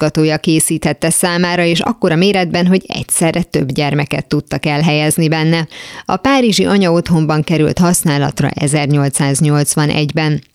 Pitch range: 150-170 Hz